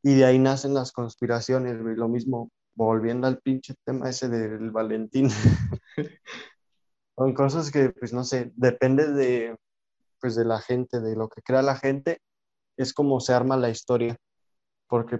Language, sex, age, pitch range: Spanish, male, 20-39, 120-135 Hz